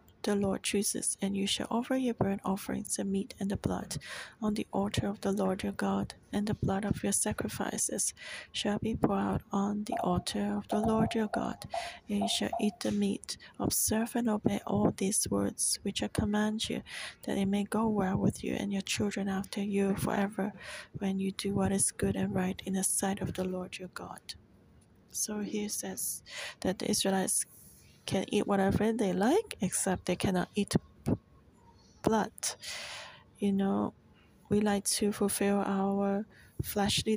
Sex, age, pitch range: female, 30-49, 195-210 Hz